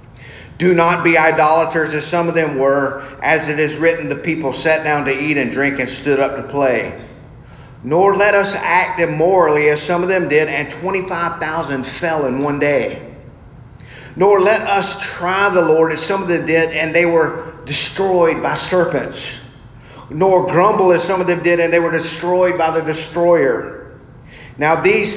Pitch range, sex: 140-185 Hz, male